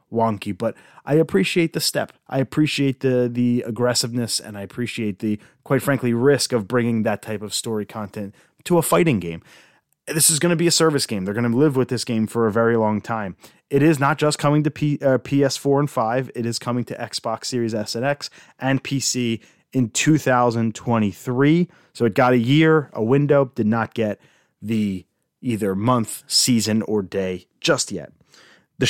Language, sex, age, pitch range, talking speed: English, male, 30-49, 110-135 Hz, 190 wpm